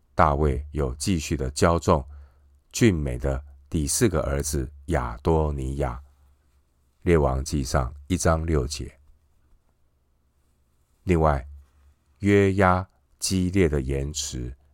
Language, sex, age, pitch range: Chinese, male, 50-69, 65-80 Hz